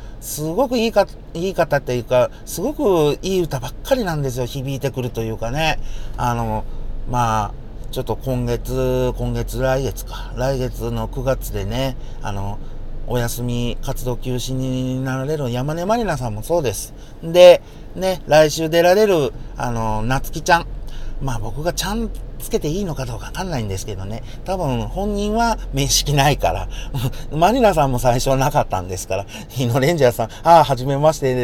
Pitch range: 115-155 Hz